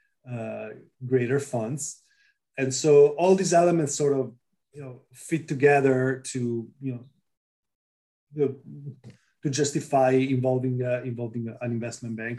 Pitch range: 125-145 Hz